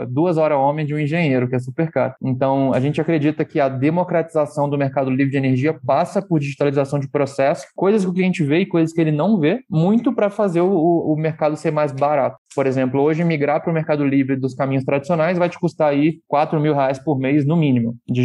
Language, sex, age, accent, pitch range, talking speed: Portuguese, male, 20-39, Brazilian, 135-160 Hz, 230 wpm